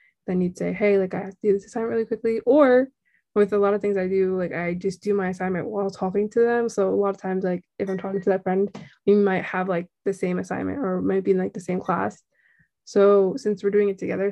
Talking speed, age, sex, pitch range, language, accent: 270 wpm, 20-39, female, 190-210 Hz, English, American